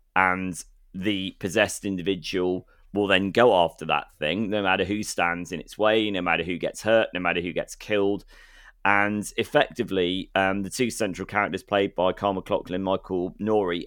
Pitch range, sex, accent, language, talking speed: 90-105 Hz, male, British, English, 175 wpm